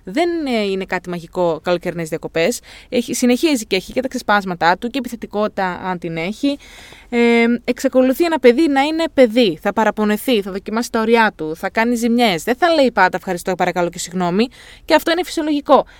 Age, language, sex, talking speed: 20-39, Greek, female, 175 wpm